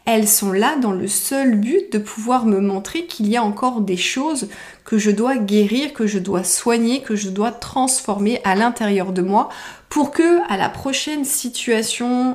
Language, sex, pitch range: French, female, 205-255 Hz